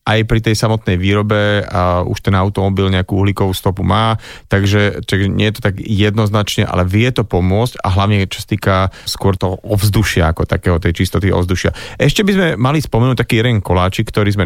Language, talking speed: Slovak, 185 wpm